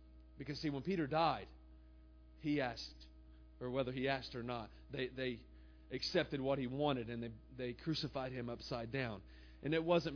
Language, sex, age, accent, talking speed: English, male, 30-49, American, 170 wpm